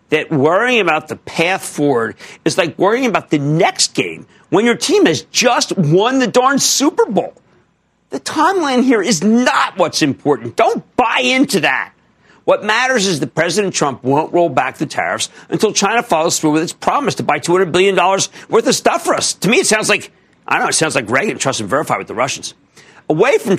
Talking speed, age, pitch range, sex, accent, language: 205 wpm, 50-69, 145-235 Hz, male, American, English